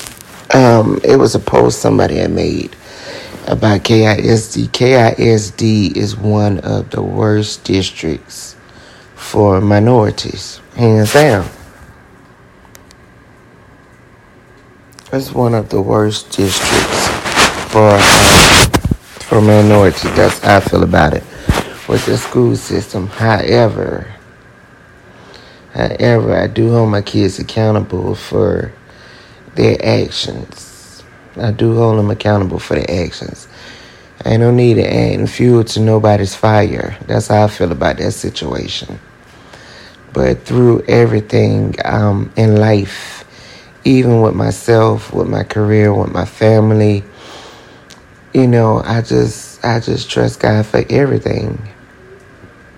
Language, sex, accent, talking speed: English, male, American, 115 wpm